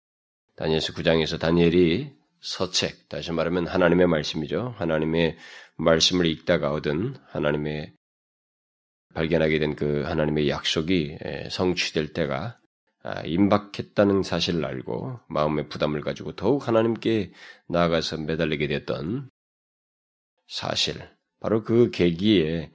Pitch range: 75-95 Hz